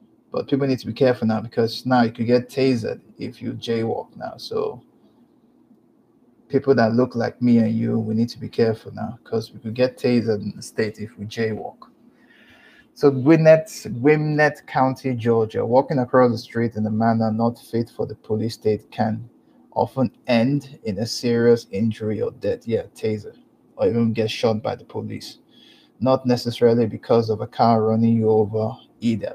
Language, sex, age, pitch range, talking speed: English, male, 20-39, 110-125 Hz, 180 wpm